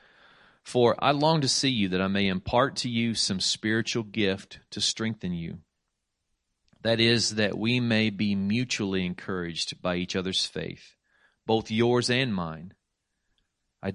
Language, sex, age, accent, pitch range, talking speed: English, male, 40-59, American, 95-115 Hz, 150 wpm